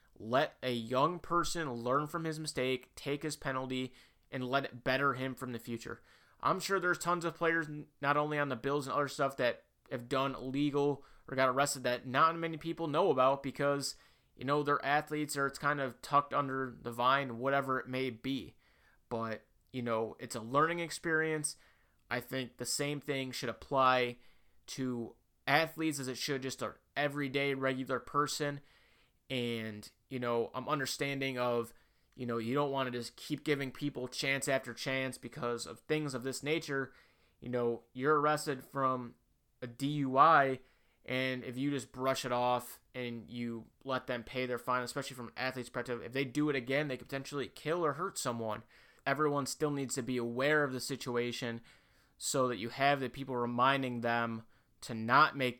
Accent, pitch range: American, 120-145 Hz